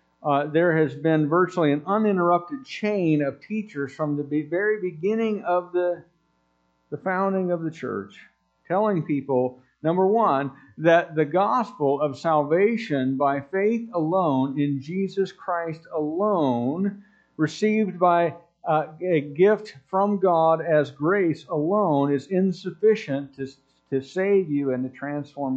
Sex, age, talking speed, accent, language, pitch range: male, 50-69, 130 wpm, American, English, 130-180 Hz